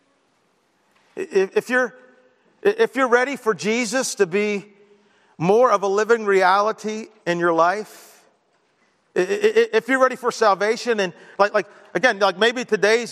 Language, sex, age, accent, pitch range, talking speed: English, male, 50-69, American, 180-230 Hz, 135 wpm